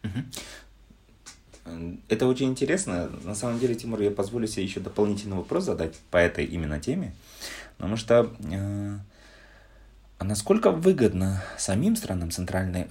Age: 20-39